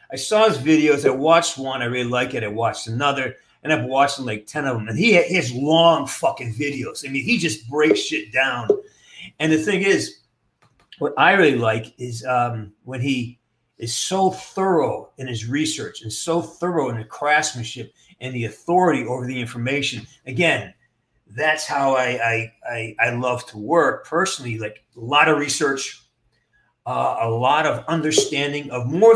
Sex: male